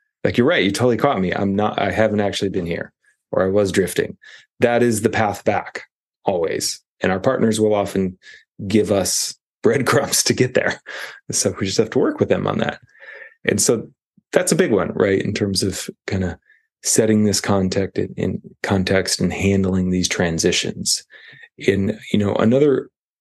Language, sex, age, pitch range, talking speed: English, male, 30-49, 95-110 Hz, 180 wpm